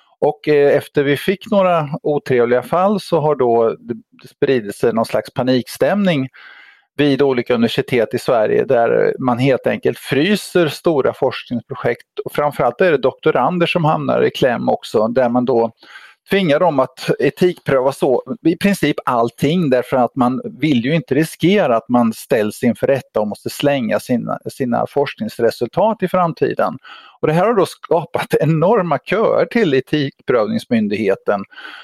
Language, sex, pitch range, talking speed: Swedish, male, 135-190 Hz, 145 wpm